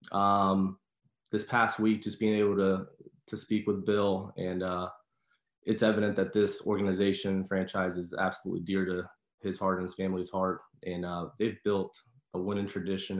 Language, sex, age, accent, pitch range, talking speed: English, male, 20-39, American, 90-95 Hz, 170 wpm